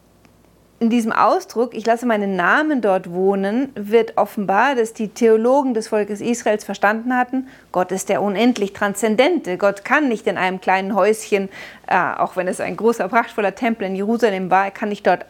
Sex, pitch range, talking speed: female, 195-235 Hz, 175 wpm